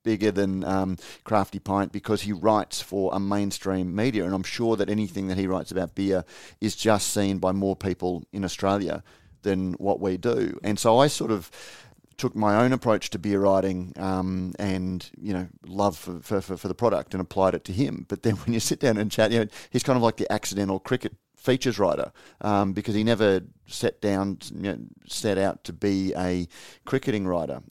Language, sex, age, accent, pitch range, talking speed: English, male, 30-49, Australian, 95-110 Hz, 210 wpm